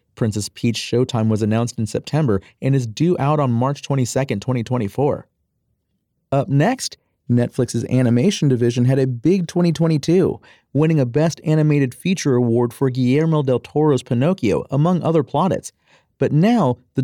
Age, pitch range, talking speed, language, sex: 30-49, 120-150 Hz, 145 wpm, English, male